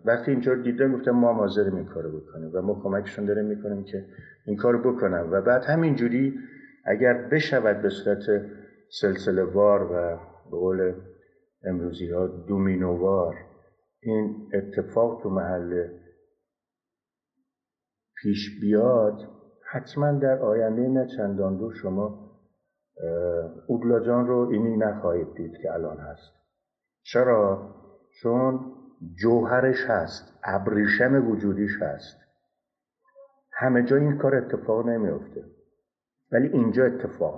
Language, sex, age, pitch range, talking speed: Persian, male, 50-69, 95-125 Hz, 110 wpm